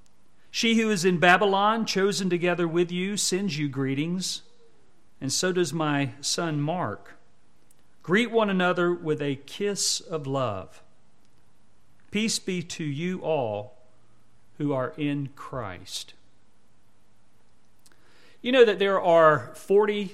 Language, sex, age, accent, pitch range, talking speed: English, male, 40-59, American, 130-175 Hz, 120 wpm